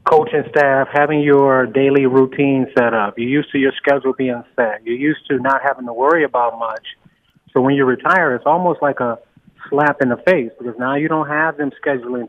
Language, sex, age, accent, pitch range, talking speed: English, male, 30-49, American, 125-145 Hz, 210 wpm